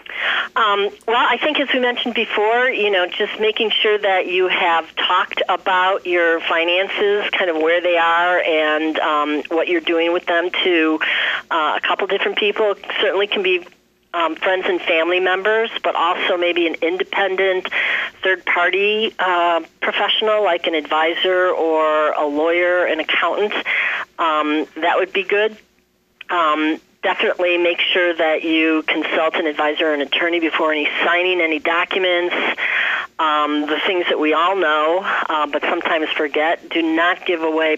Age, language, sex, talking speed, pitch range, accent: 40-59, English, female, 160 wpm, 155-185 Hz, American